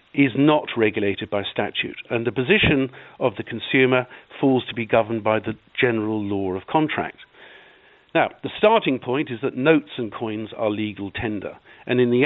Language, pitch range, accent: English, 105-135 Hz, British